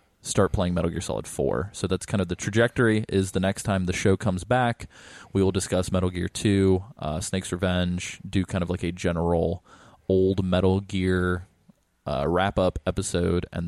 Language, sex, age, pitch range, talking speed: English, male, 20-39, 90-105 Hz, 190 wpm